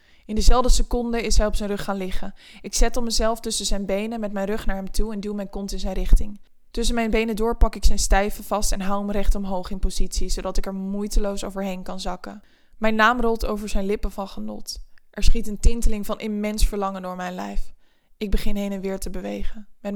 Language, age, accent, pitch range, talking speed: Dutch, 20-39, Dutch, 195-225 Hz, 235 wpm